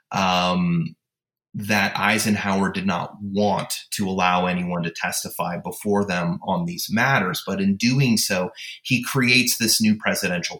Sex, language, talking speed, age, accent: male, English, 140 wpm, 30-49, American